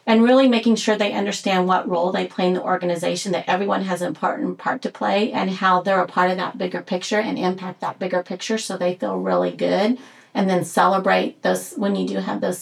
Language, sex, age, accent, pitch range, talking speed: English, female, 40-59, American, 185-220 Hz, 235 wpm